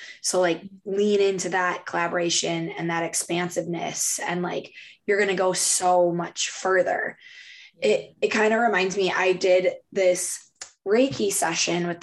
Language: English